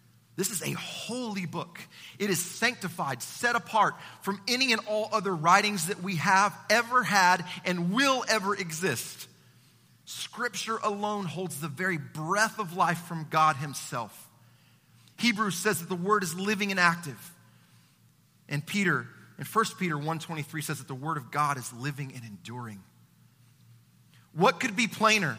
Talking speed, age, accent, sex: 155 wpm, 30-49, American, male